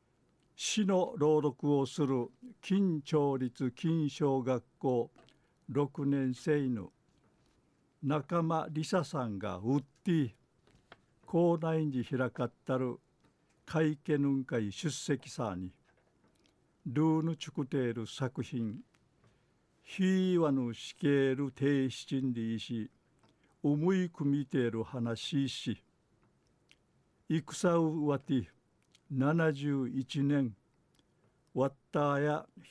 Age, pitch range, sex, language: 60-79, 130-160 Hz, male, Japanese